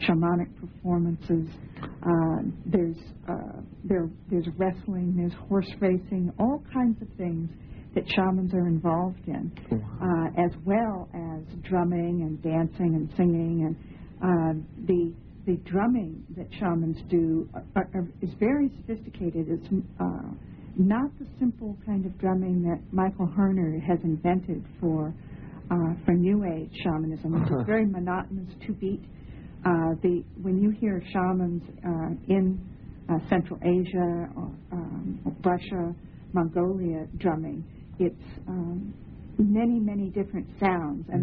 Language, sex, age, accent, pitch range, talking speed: English, female, 60-79, American, 165-190 Hz, 130 wpm